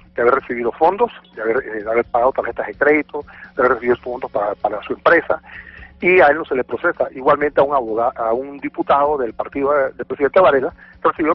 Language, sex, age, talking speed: Spanish, male, 40-59, 215 wpm